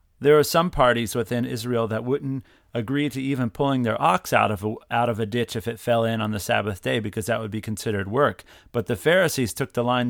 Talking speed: 245 wpm